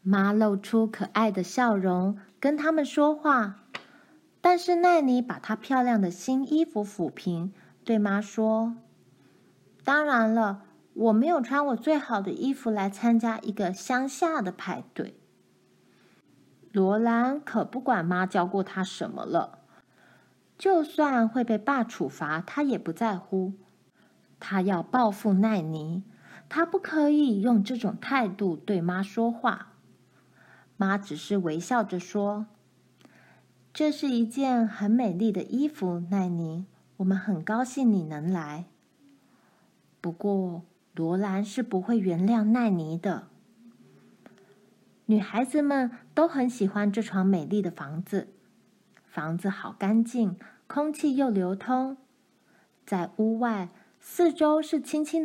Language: Chinese